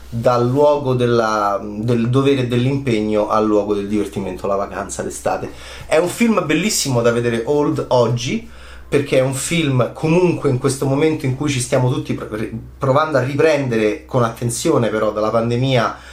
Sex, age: male, 30-49